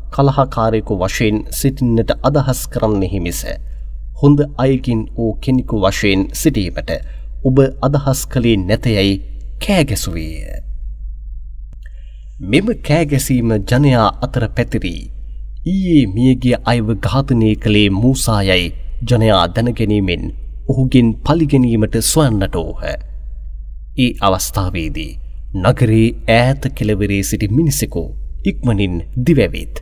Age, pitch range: 30-49, 80-130 Hz